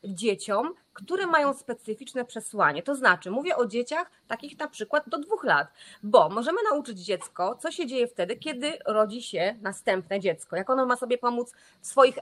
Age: 30-49